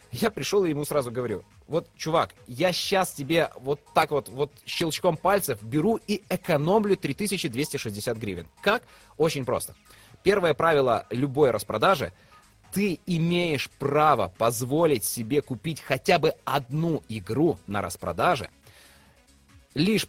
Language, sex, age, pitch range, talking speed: Russian, male, 30-49, 120-185 Hz, 125 wpm